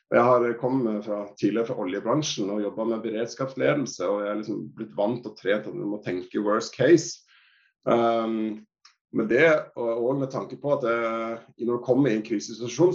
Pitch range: 105-125 Hz